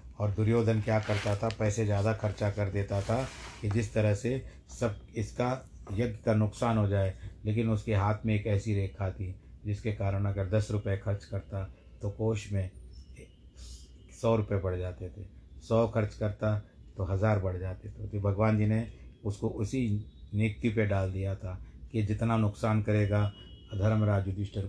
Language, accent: Hindi, native